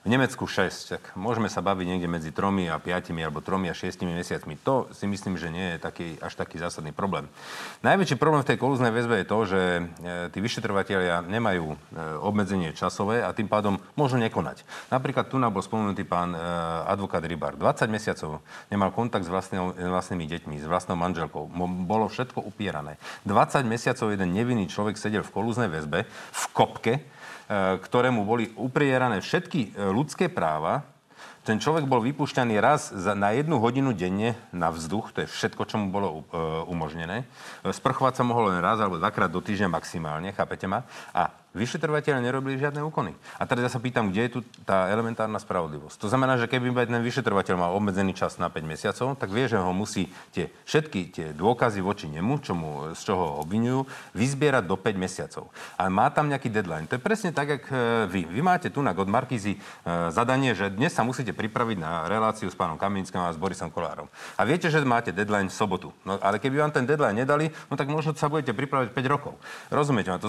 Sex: male